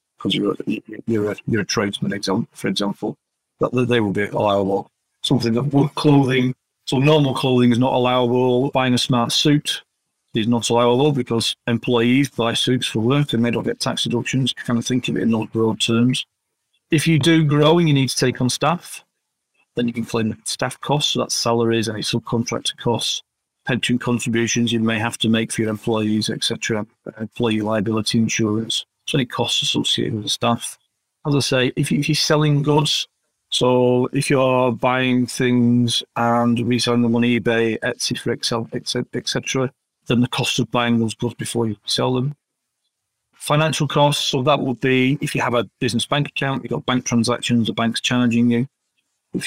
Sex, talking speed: male, 185 wpm